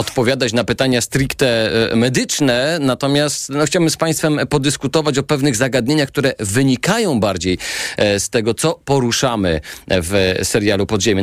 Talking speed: 135 wpm